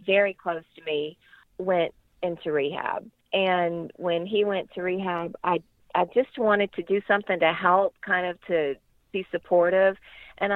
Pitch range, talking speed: 170-220 Hz, 160 wpm